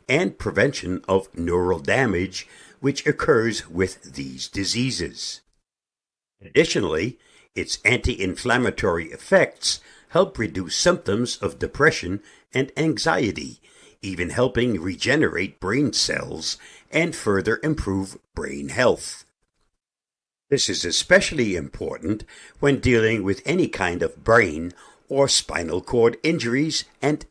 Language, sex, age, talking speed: English, male, 60-79, 105 wpm